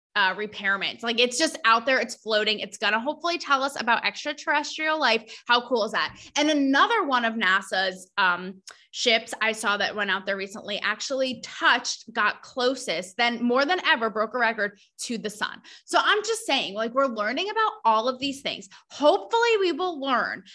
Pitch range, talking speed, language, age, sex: 230-305 Hz, 195 wpm, English, 20-39, female